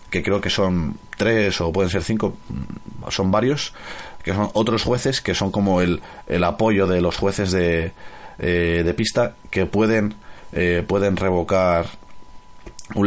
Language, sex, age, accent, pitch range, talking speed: Spanish, male, 30-49, Spanish, 85-100 Hz, 155 wpm